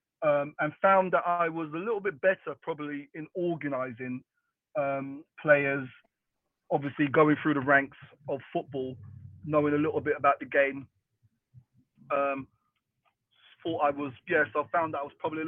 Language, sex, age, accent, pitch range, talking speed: English, male, 30-49, British, 140-155 Hz, 155 wpm